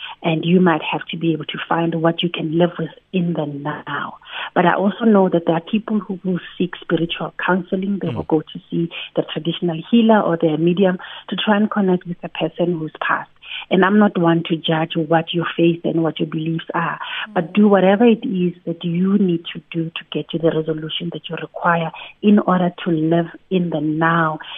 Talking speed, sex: 215 wpm, female